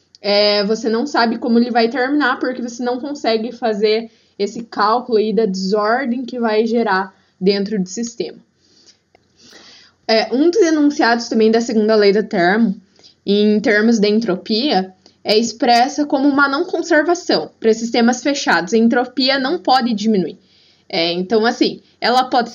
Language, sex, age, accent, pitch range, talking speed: Portuguese, female, 10-29, Brazilian, 205-260 Hz, 150 wpm